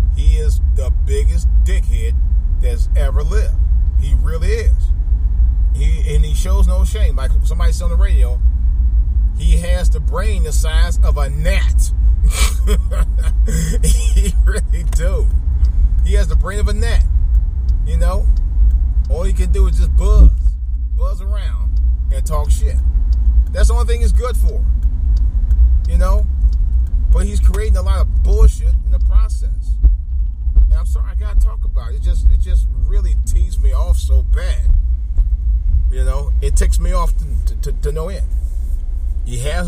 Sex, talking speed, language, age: male, 155 wpm, English, 30-49